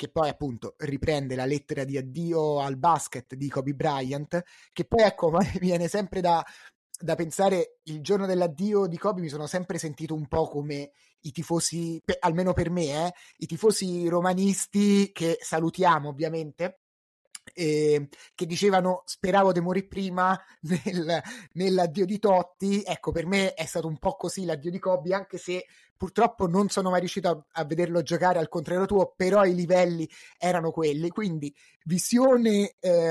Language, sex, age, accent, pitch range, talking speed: Italian, male, 30-49, native, 160-195 Hz, 160 wpm